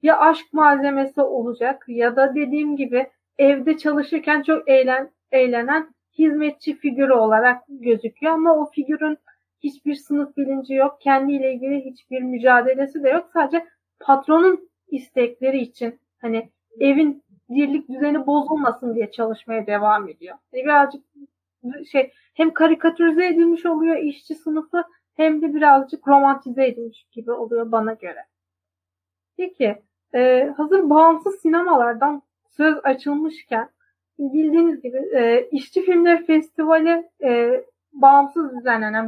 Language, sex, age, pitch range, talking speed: Turkish, female, 30-49, 250-315 Hz, 120 wpm